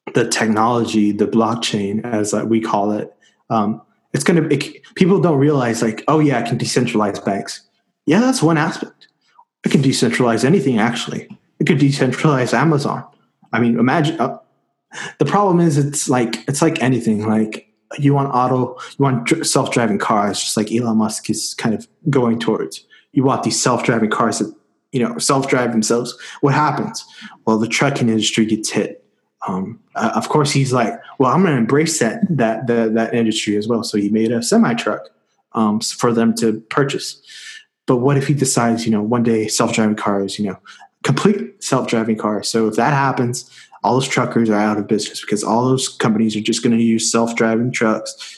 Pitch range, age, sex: 110-135 Hz, 20-39, male